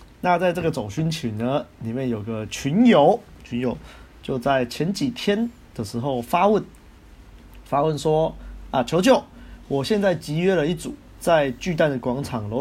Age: 20-39